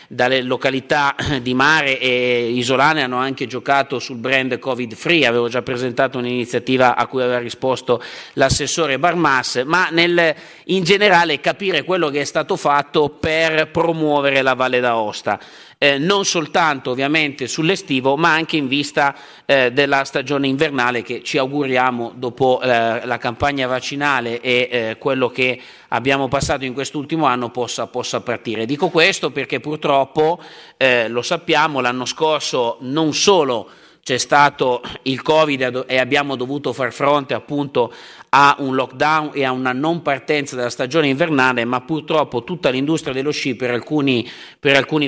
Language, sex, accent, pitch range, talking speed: Italian, male, native, 125-155 Hz, 150 wpm